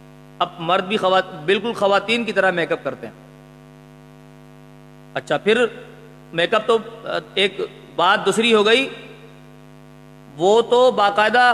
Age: 40-59